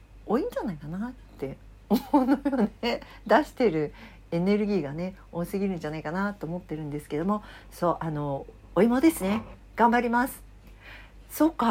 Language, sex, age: Japanese, female, 60-79